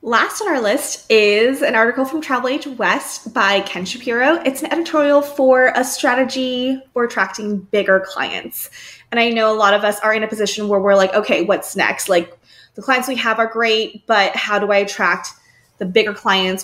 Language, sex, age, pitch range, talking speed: English, female, 20-39, 195-250 Hz, 200 wpm